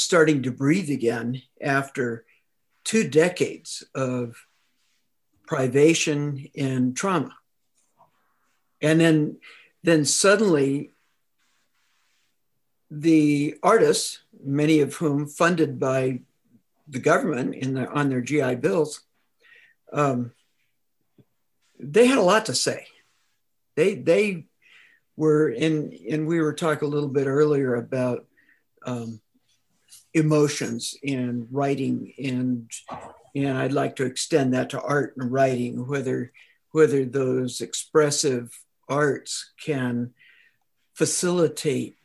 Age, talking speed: 60-79, 105 wpm